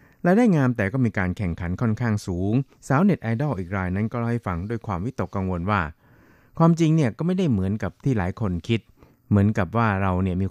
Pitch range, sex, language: 95-120 Hz, male, Thai